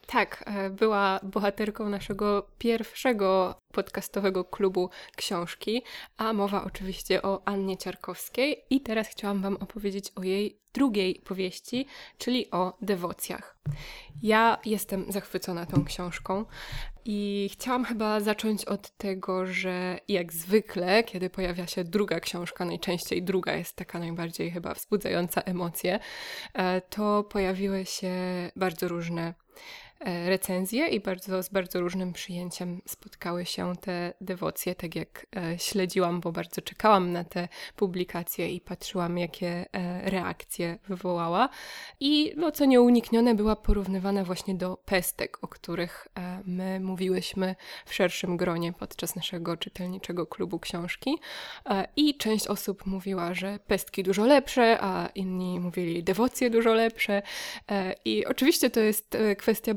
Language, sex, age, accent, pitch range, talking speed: Polish, female, 20-39, native, 180-215 Hz, 120 wpm